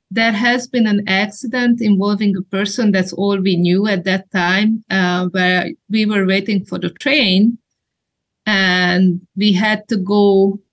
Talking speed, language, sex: 155 wpm, English, female